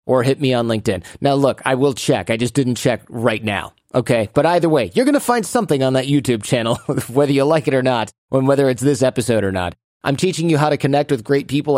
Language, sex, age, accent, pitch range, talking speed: English, male, 30-49, American, 115-145 Hz, 255 wpm